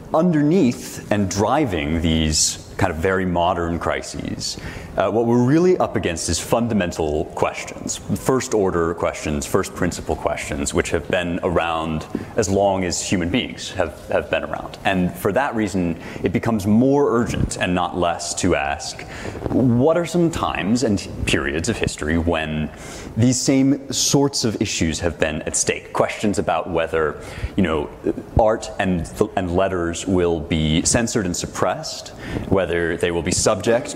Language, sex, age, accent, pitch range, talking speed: English, male, 30-49, American, 85-120 Hz, 155 wpm